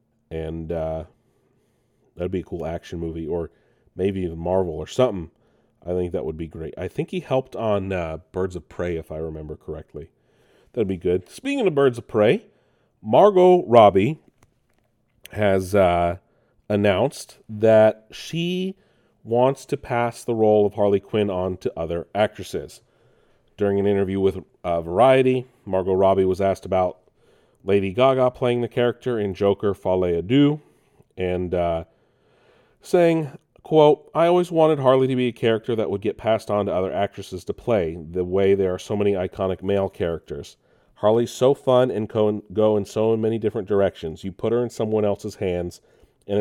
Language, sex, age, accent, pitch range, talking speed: English, male, 30-49, American, 90-125 Hz, 170 wpm